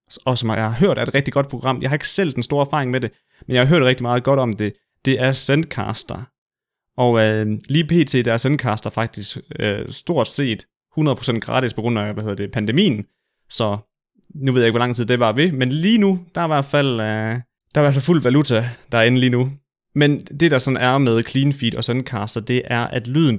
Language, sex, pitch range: Danish, male, 115-145 Hz